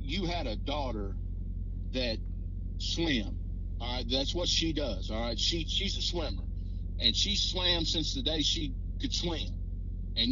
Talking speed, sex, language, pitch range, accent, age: 165 wpm, male, English, 90-125 Hz, American, 50-69